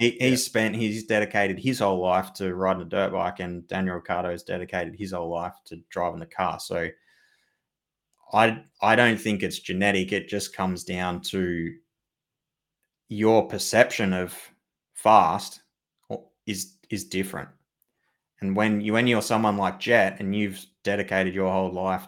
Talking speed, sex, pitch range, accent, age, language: 150 wpm, male, 95-110 Hz, Australian, 20-39, English